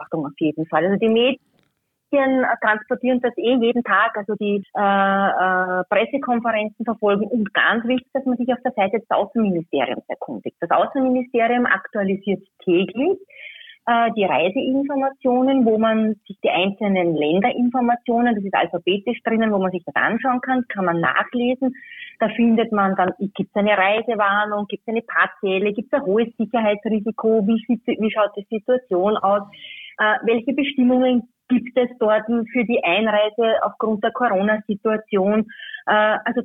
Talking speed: 150 wpm